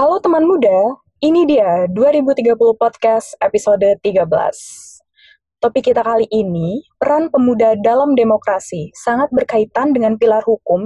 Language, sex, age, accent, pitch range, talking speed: Indonesian, female, 20-39, native, 215-285 Hz, 120 wpm